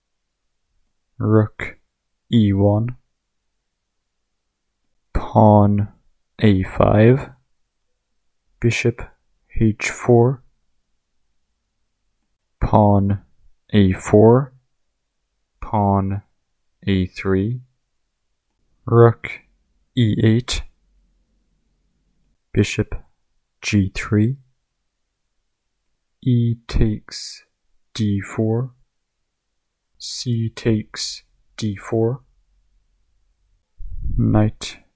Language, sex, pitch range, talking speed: English, male, 90-115 Hz, 40 wpm